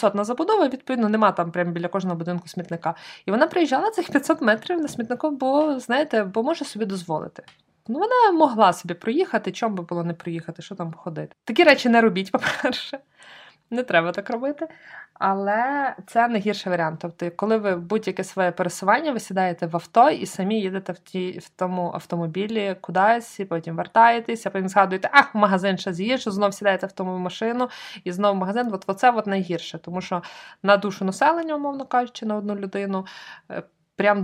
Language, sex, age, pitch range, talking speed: Ukrainian, female, 20-39, 175-225 Hz, 180 wpm